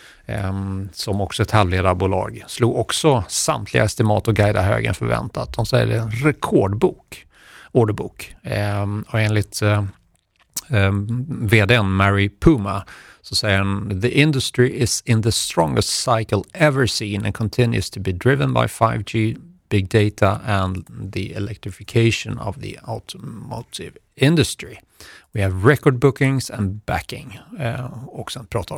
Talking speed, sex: 140 wpm, male